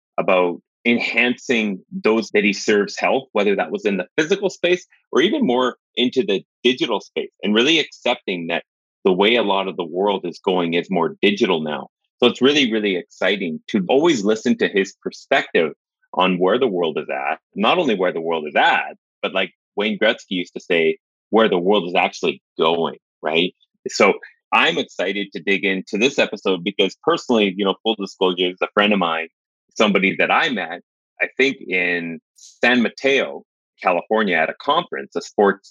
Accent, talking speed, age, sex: American, 185 wpm, 30-49, male